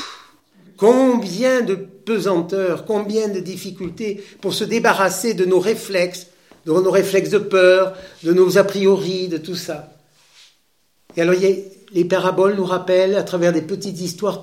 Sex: male